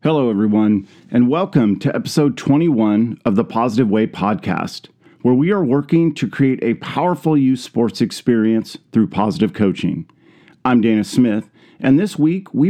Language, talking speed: English, 155 wpm